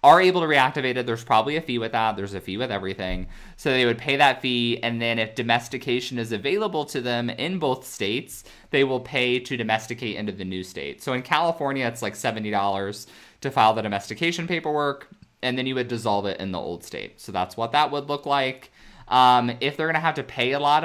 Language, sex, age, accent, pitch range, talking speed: English, male, 20-39, American, 105-135 Hz, 225 wpm